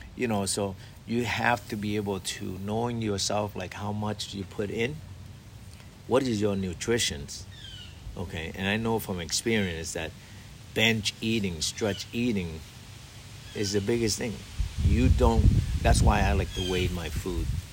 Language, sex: English, male